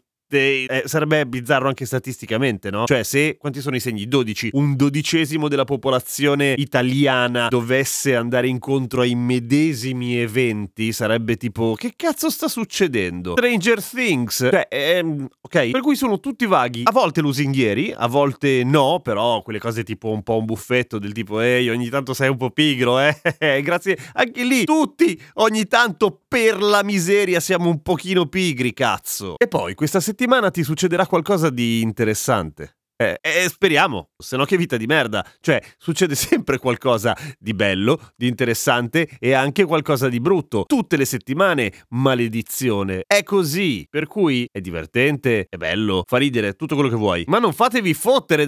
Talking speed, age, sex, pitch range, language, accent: 160 wpm, 30-49, male, 120-180 Hz, Italian, native